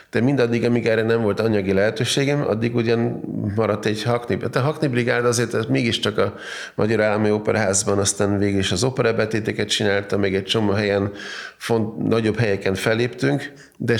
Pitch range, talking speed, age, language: 100-125 Hz, 165 wpm, 30-49, Hungarian